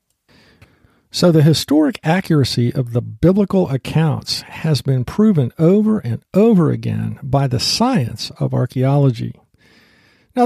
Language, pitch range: English, 125-170 Hz